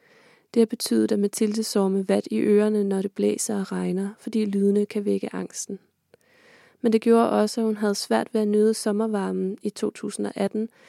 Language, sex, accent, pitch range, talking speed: Danish, female, native, 200-225 Hz, 180 wpm